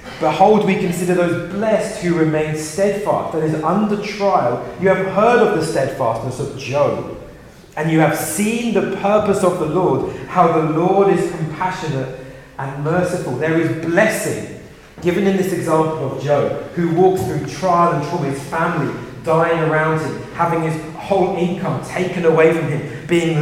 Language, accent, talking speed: English, British, 165 wpm